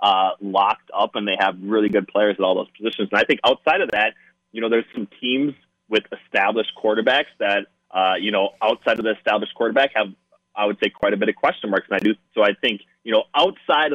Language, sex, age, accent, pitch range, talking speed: English, male, 20-39, American, 95-115 Hz, 230 wpm